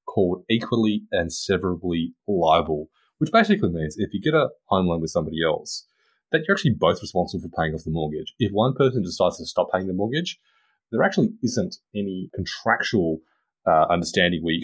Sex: male